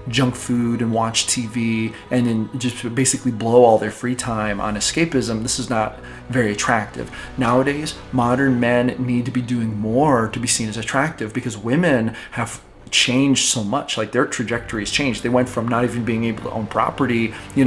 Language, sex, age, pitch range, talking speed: English, male, 30-49, 110-130 Hz, 185 wpm